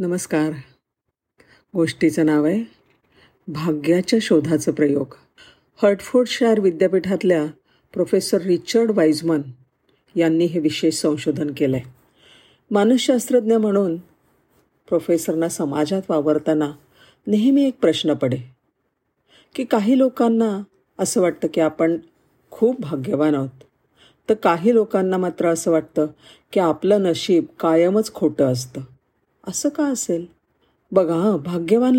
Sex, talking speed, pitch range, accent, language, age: female, 95 wpm, 155-200 Hz, native, Marathi, 50-69